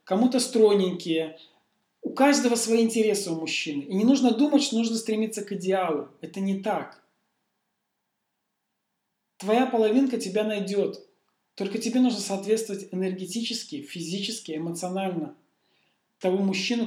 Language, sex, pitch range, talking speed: Russian, male, 185-230 Hz, 115 wpm